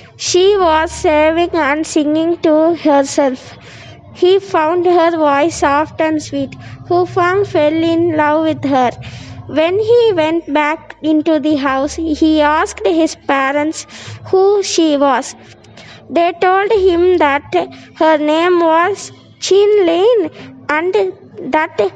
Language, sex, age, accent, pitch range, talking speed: Hindi, female, 20-39, native, 300-350 Hz, 125 wpm